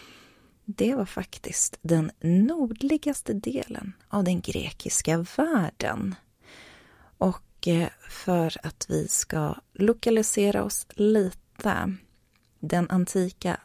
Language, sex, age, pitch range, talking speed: Swedish, female, 30-49, 155-215 Hz, 90 wpm